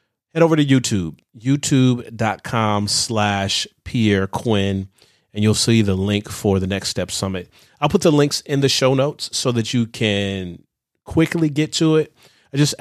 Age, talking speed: 30-49, 170 wpm